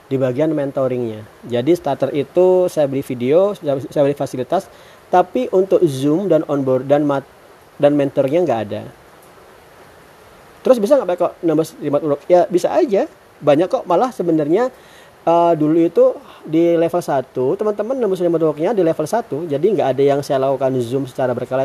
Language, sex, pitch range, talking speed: Indonesian, male, 135-175 Hz, 150 wpm